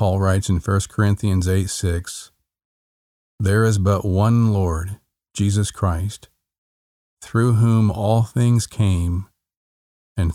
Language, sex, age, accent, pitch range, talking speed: English, male, 40-59, American, 90-110 Hz, 115 wpm